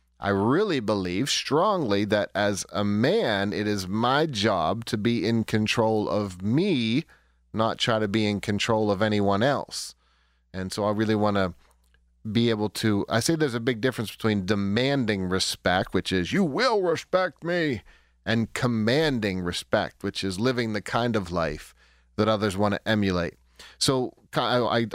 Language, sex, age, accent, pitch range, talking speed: English, male, 30-49, American, 100-125 Hz, 165 wpm